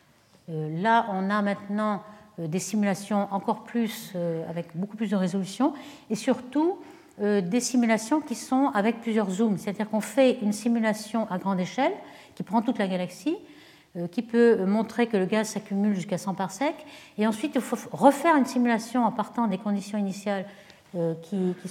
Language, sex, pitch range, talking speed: French, female, 190-235 Hz, 165 wpm